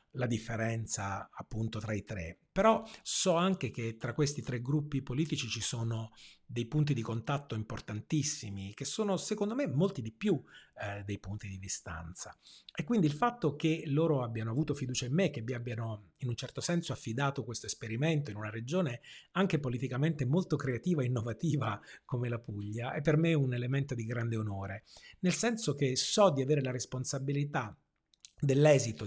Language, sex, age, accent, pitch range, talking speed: Italian, male, 30-49, native, 110-145 Hz, 175 wpm